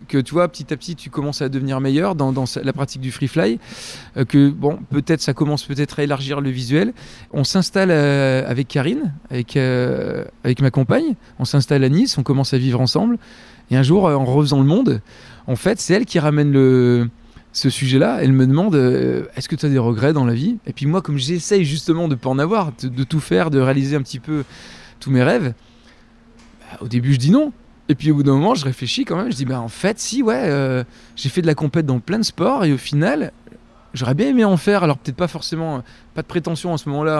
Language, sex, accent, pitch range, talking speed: French, male, French, 130-160 Hz, 240 wpm